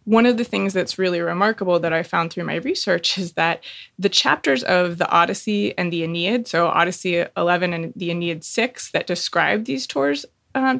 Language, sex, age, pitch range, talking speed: English, female, 20-39, 165-200 Hz, 195 wpm